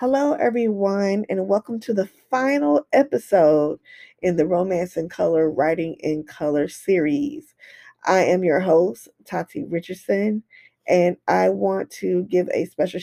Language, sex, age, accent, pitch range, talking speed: English, female, 20-39, American, 165-200 Hz, 140 wpm